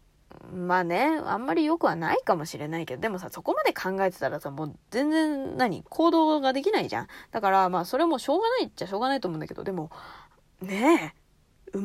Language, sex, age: Japanese, female, 20-39